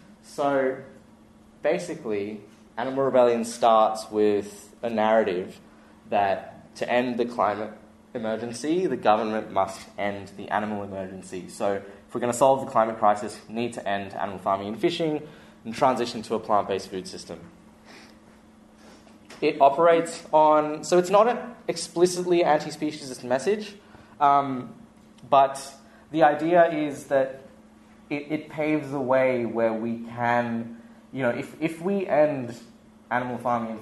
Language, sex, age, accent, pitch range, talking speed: English, male, 20-39, Australian, 110-145 Hz, 140 wpm